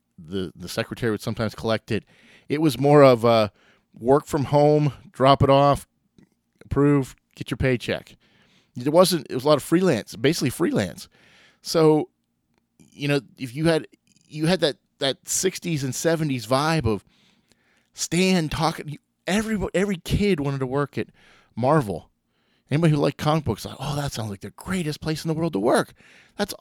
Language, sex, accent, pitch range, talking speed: English, male, American, 125-165 Hz, 170 wpm